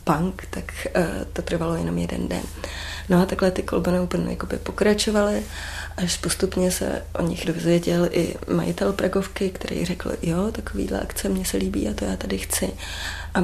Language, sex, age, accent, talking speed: Czech, female, 20-39, native, 165 wpm